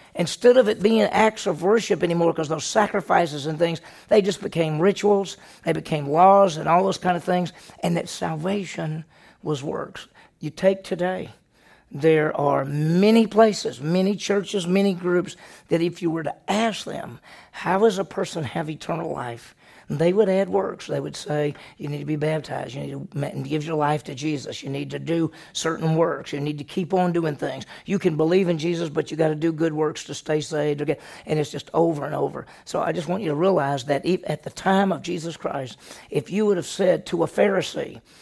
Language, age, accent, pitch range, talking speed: English, 50-69, American, 155-195 Hz, 205 wpm